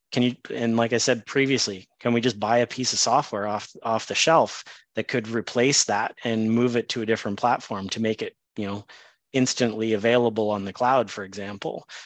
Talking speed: 210 wpm